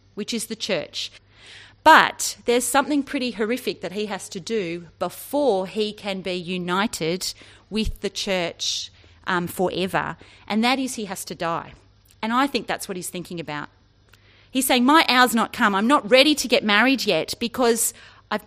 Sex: female